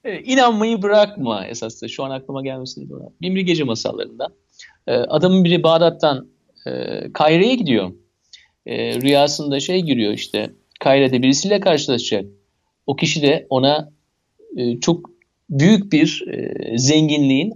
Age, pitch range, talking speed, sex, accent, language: 50-69, 125-175 Hz, 125 wpm, male, native, Turkish